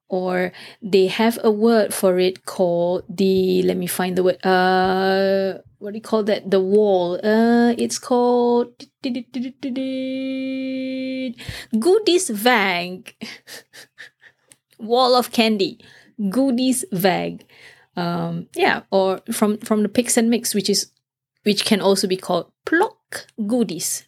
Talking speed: 140 wpm